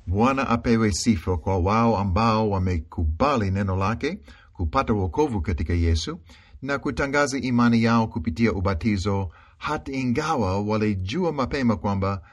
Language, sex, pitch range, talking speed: Swahili, male, 95-120 Hz, 115 wpm